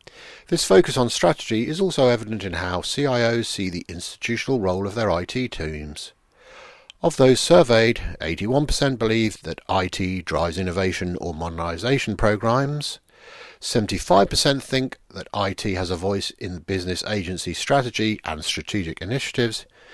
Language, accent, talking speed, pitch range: English, British, 130 wpm, 90-125 Hz